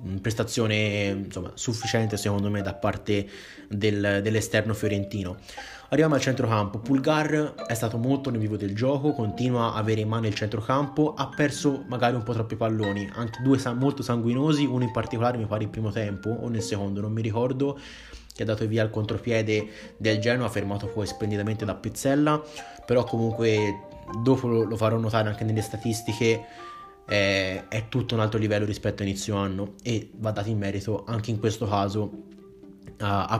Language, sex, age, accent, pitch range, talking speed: Italian, male, 20-39, native, 100-120 Hz, 170 wpm